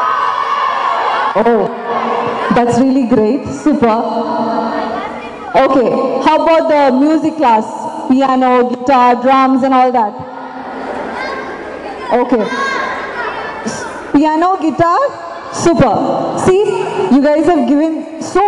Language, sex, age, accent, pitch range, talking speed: Tamil, female, 20-39, native, 255-310 Hz, 90 wpm